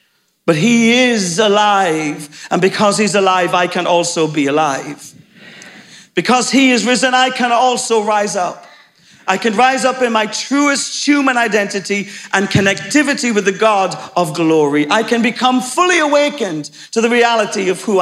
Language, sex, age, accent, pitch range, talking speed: English, male, 50-69, British, 175-235 Hz, 160 wpm